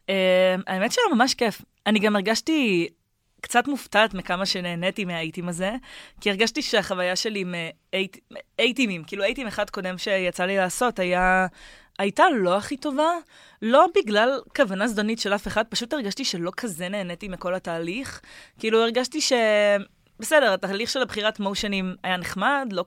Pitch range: 180-220 Hz